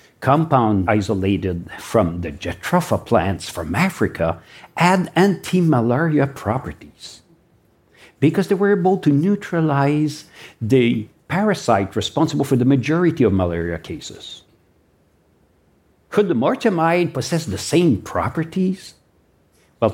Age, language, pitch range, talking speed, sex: 60-79, English, 100-155 Hz, 105 wpm, male